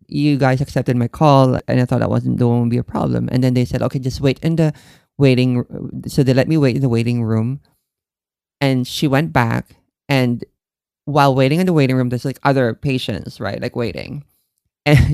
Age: 20-39